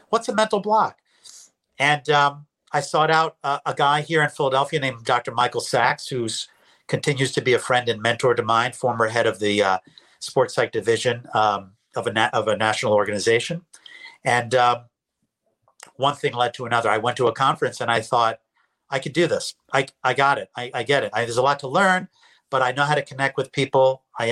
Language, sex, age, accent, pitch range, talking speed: English, male, 50-69, American, 115-145 Hz, 215 wpm